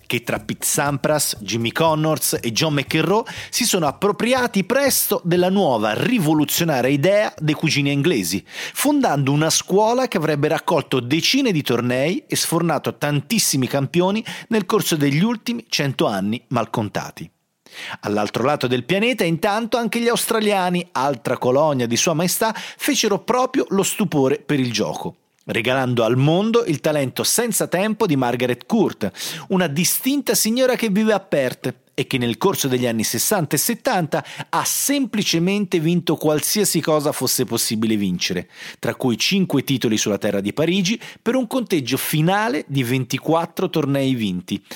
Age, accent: 40-59, native